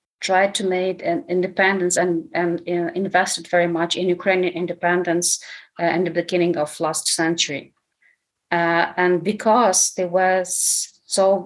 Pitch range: 175-195 Hz